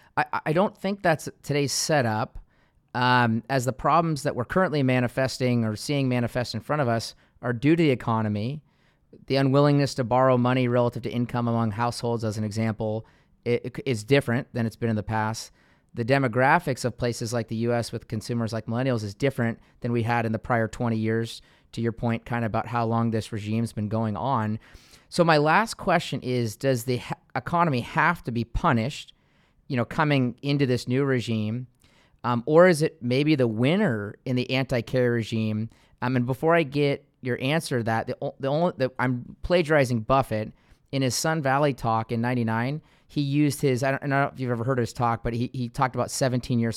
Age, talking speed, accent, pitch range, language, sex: 30-49, 200 wpm, American, 115-140 Hz, English, male